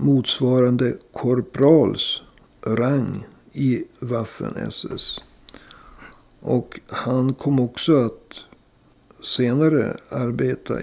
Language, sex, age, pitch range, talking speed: Swedish, male, 50-69, 125-150 Hz, 65 wpm